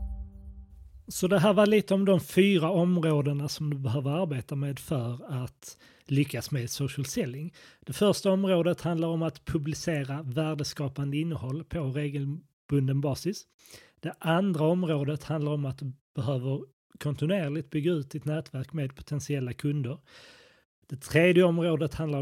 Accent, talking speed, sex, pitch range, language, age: native, 140 wpm, male, 135-170 Hz, Swedish, 30-49